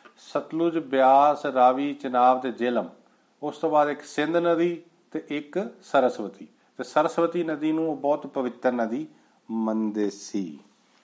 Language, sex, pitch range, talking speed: Punjabi, male, 130-165 Hz, 130 wpm